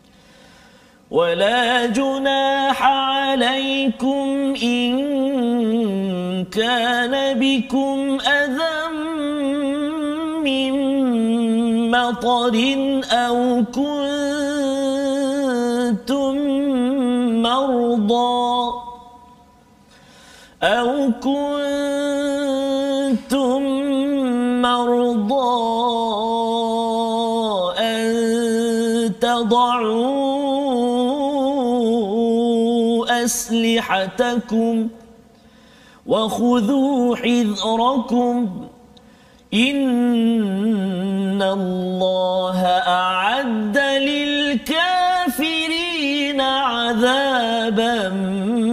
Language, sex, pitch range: Malayalam, male, 230-275 Hz